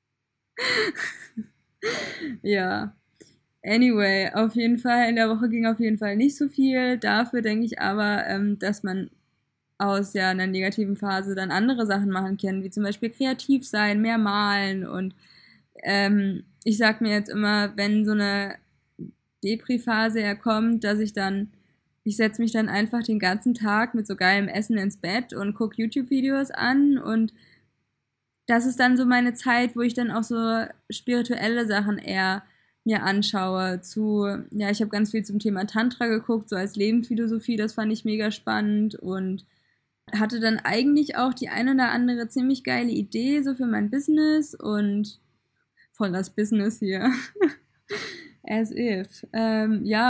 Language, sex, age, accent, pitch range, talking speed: German, female, 20-39, German, 205-240 Hz, 155 wpm